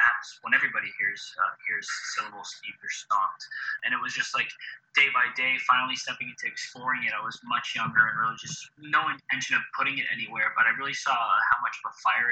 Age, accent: 20-39, American